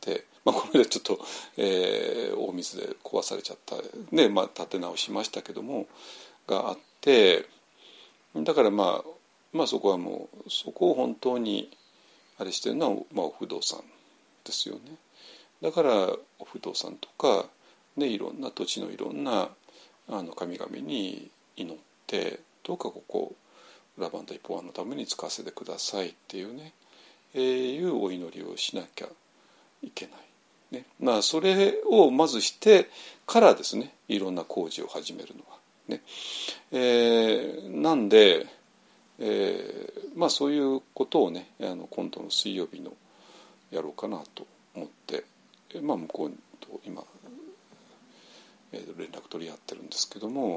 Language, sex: Japanese, male